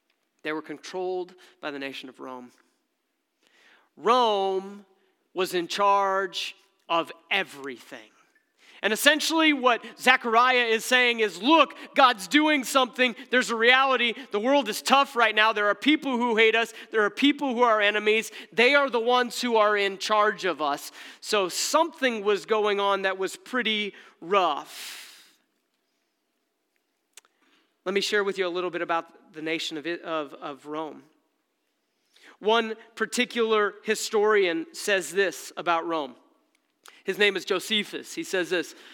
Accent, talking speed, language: American, 145 wpm, English